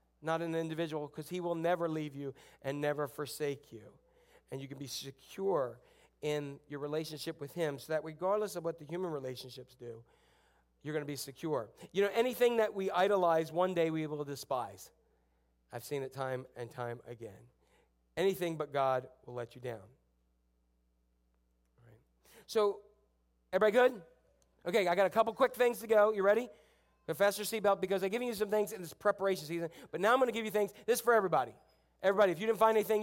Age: 40-59